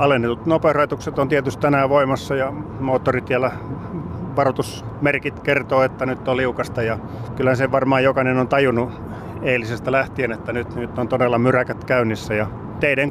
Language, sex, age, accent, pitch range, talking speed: Finnish, male, 30-49, native, 120-140 Hz, 145 wpm